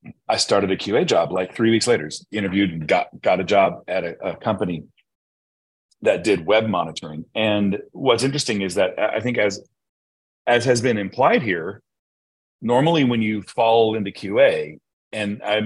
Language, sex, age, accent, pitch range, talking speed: English, male, 40-59, American, 85-105 Hz, 170 wpm